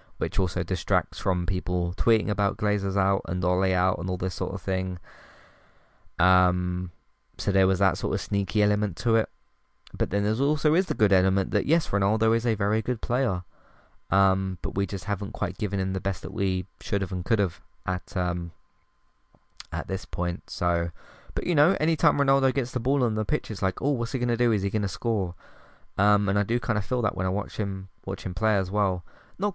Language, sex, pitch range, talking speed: English, male, 95-115 Hz, 225 wpm